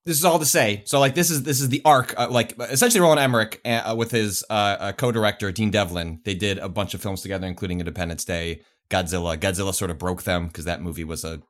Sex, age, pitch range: male, 30-49, 95-130 Hz